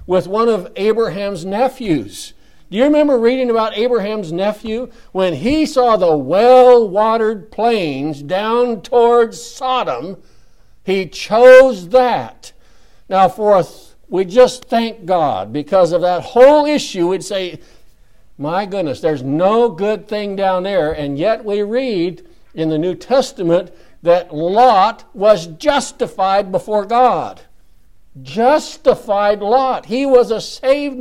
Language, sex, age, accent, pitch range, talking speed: English, male, 60-79, American, 170-235 Hz, 130 wpm